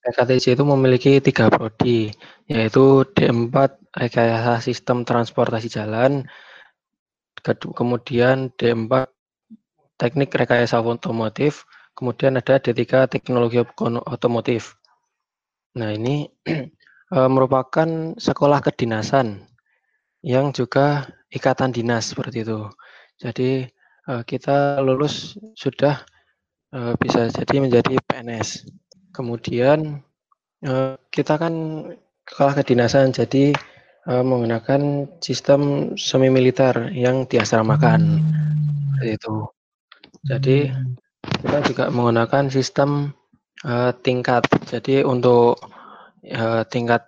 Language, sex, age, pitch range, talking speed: Indonesian, male, 20-39, 120-140 Hz, 85 wpm